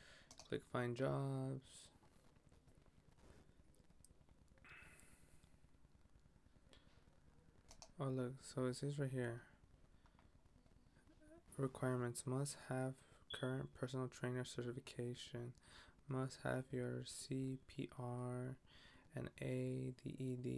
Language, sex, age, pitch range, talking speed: English, male, 20-39, 120-130 Hz, 65 wpm